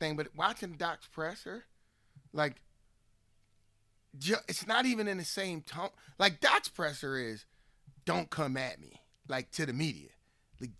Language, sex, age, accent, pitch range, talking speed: English, male, 30-49, American, 120-165 Hz, 150 wpm